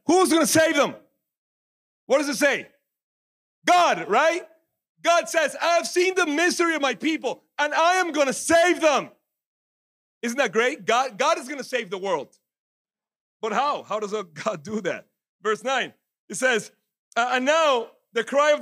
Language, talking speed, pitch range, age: English, 175 wpm, 200-290 Hz, 40-59